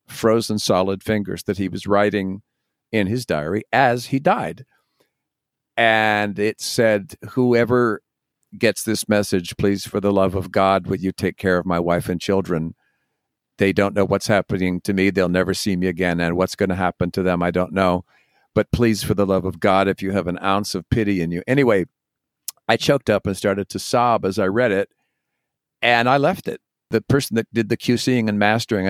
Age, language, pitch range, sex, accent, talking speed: 50-69, English, 95-125 Hz, male, American, 200 wpm